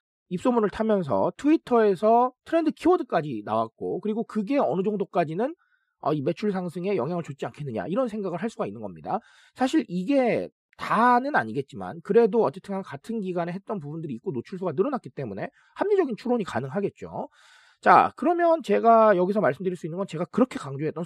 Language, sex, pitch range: Korean, male, 180-260 Hz